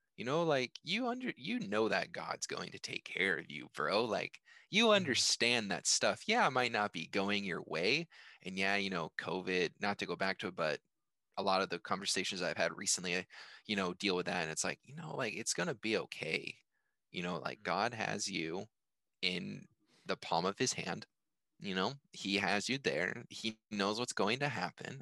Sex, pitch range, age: male, 95-130 Hz, 20-39